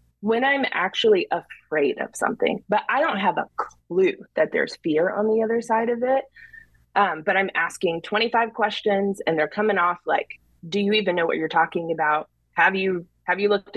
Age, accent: 20-39, American